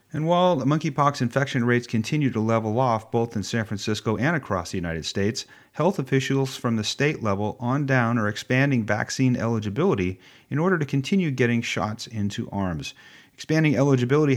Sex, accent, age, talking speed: male, American, 40-59, 170 wpm